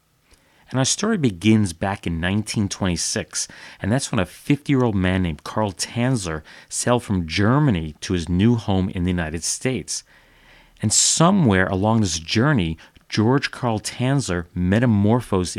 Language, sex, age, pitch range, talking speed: English, male, 40-59, 85-110 Hz, 140 wpm